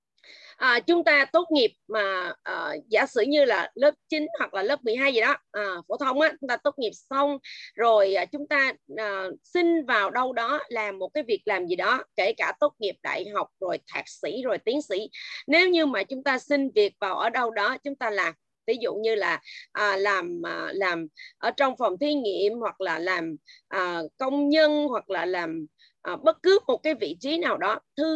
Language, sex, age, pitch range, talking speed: Vietnamese, female, 20-39, 210-315 Hz, 215 wpm